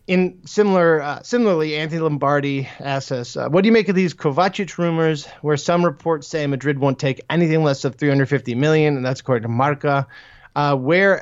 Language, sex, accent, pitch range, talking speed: English, male, American, 125-155 Hz, 195 wpm